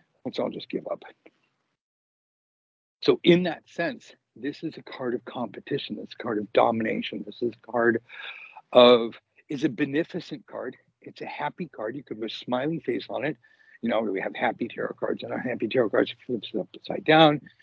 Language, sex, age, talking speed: English, male, 60-79, 195 wpm